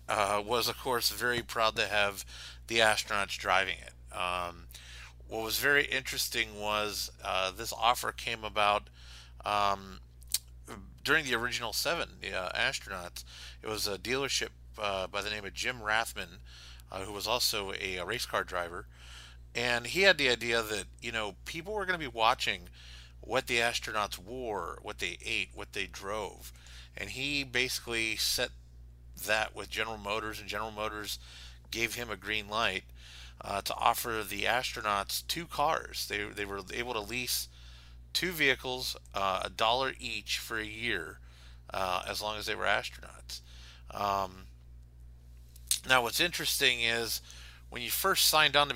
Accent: American